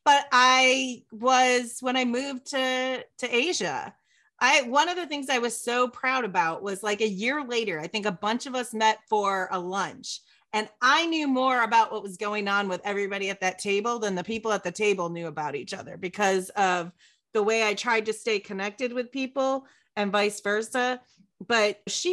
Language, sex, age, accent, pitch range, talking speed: English, female, 30-49, American, 200-255 Hz, 200 wpm